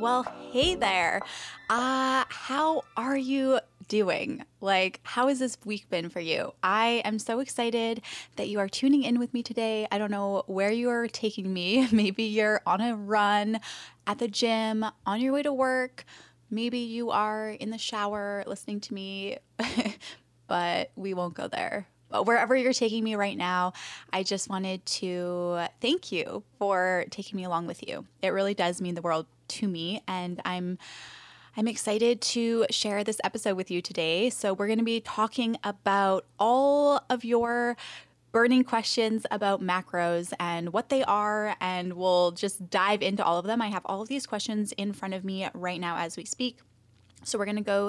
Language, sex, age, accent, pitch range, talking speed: English, female, 20-39, American, 190-235 Hz, 185 wpm